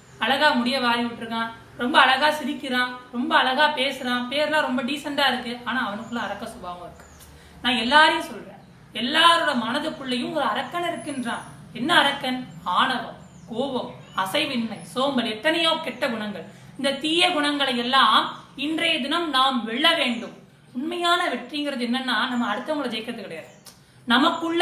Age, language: 30-49, Tamil